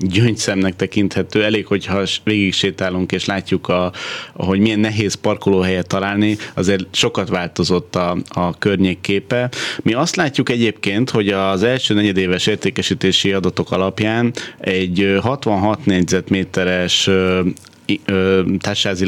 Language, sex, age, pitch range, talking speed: Hungarian, male, 30-49, 95-110 Hz, 115 wpm